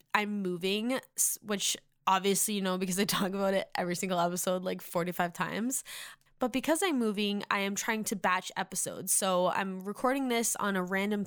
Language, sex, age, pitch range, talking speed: English, female, 10-29, 180-205 Hz, 180 wpm